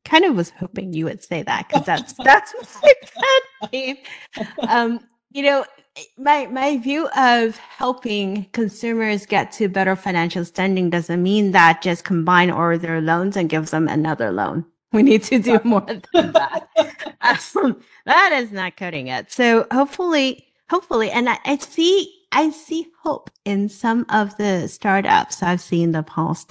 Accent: American